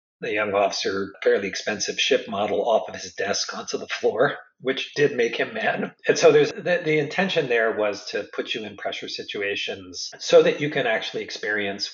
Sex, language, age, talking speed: male, English, 40-59, 195 wpm